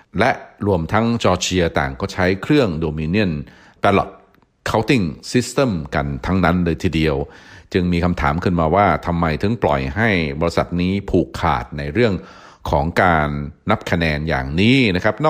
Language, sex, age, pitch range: Thai, male, 60-79, 75-100 Hz